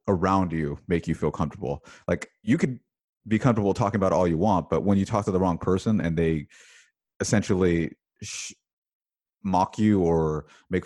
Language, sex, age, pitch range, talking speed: English, male, 30-49, 80-95 Hz, 170 wpm